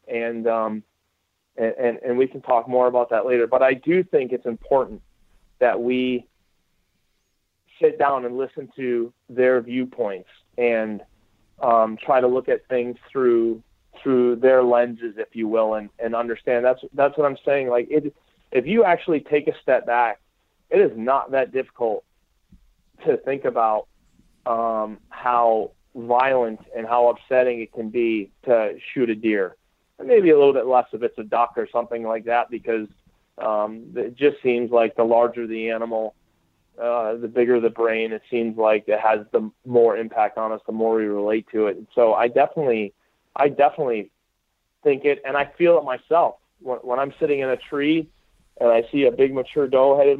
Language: English